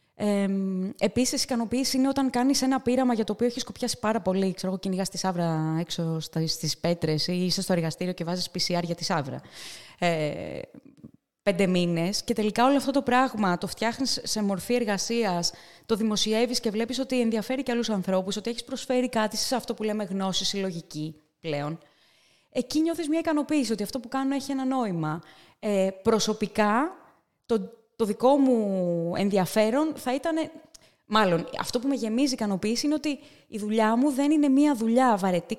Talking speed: 170 wpm